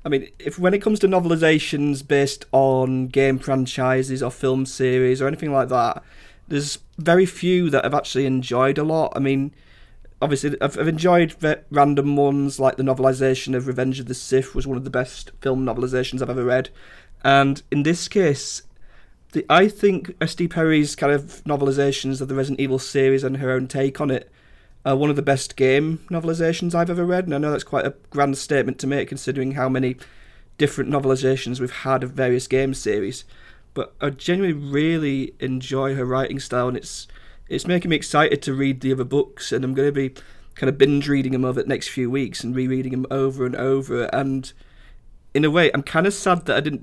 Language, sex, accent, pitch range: English, male, British, 130-150 Hz